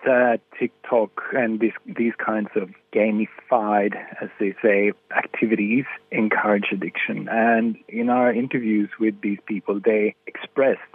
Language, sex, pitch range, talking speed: English, male, 105-115 Hz, 130 wpm